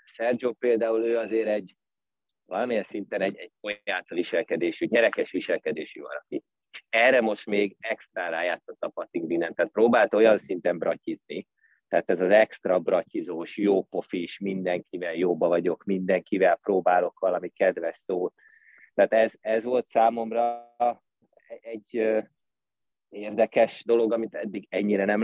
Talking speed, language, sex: 135 wpm, Hungarian, male